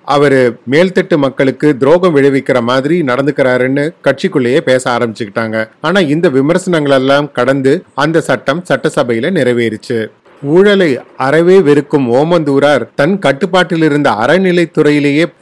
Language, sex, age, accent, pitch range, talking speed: Tamil, male, 30-49, native, 130-170 Hz, 105 wpm